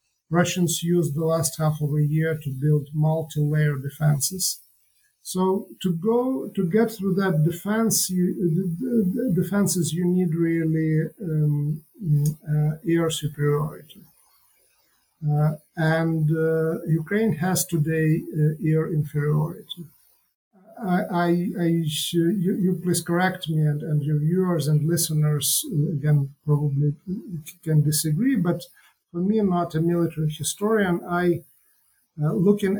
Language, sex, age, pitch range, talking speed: English, male, 50-69, 155-185 Hz, 130 wpm